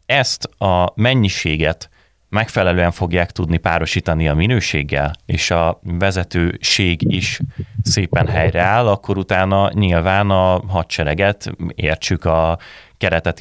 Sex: male